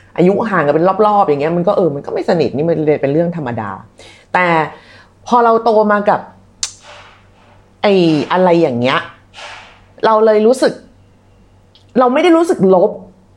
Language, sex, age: Thai, female, 30-49